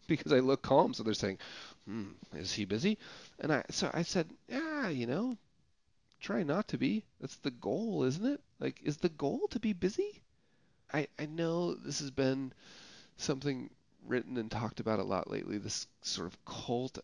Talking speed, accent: 185 wpm, American